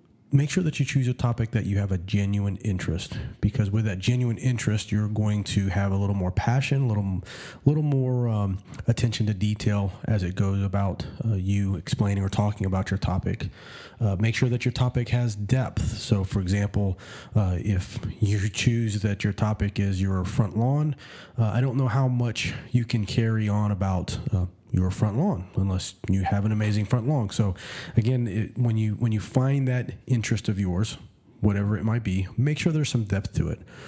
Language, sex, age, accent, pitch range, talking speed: English, male, 30-49, American, 100-125 Hz, 200 wpm